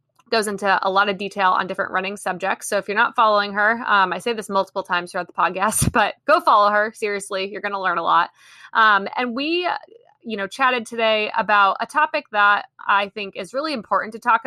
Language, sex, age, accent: English, female, 20-39, American